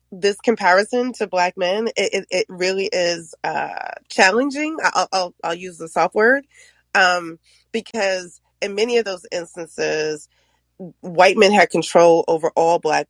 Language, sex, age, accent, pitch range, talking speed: English, female, 20-39, American, 155-195 Hz, 150 wpm